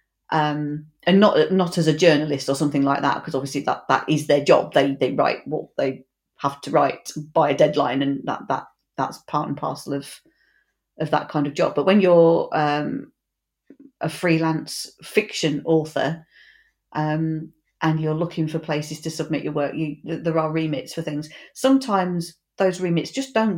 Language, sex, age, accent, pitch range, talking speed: English, female, 40-59, British, 150-175 Hz, 180 wpm